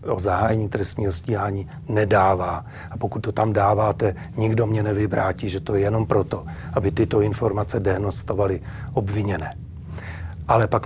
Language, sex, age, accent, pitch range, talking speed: Czech, male, 40-59, native, 105-125 Hz, 140 wpm